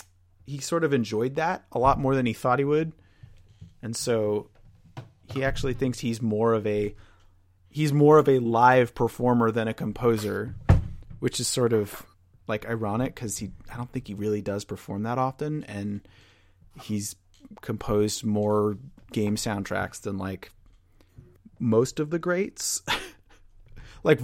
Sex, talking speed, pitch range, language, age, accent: male, 150 wpm, 100-125 Hz, English, 30-49, American